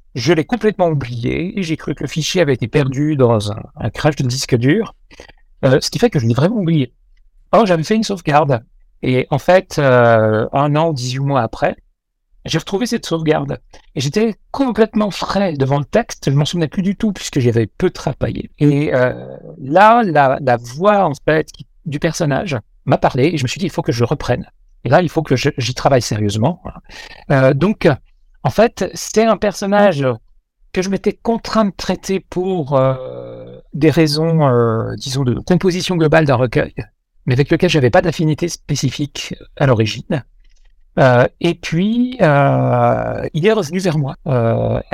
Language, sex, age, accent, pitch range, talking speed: French, male, 60-79, French, 130-175 Hz, 185 wpm